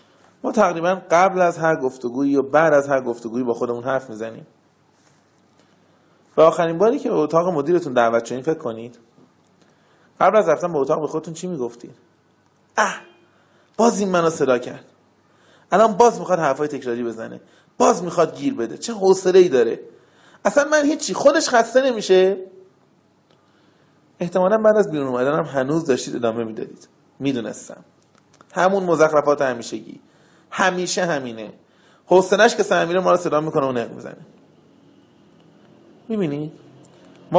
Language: Persian